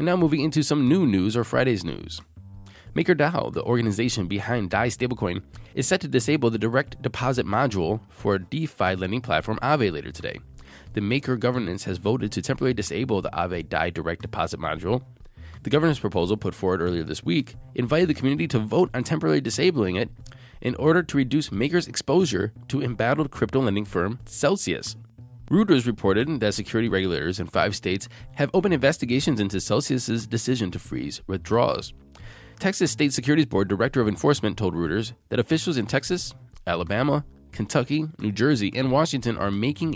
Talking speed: 170 wpm